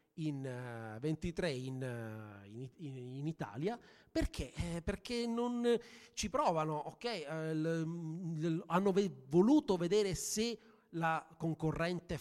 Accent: native